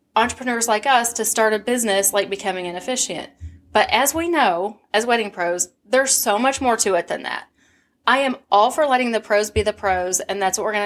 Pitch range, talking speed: 195-240 Hz, 225 wpm